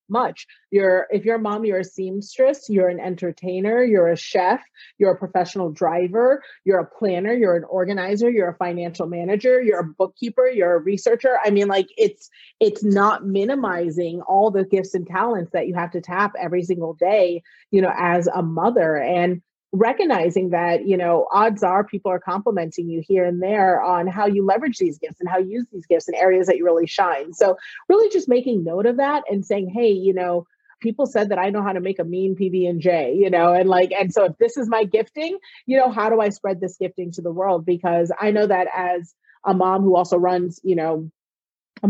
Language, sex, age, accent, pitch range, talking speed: English, female, 30-49, American, 175-210 Hz, 215 wpm